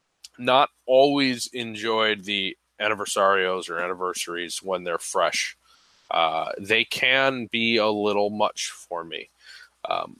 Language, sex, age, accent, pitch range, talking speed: English, male, 20-39, American, 95-115 Hz, 120 wpm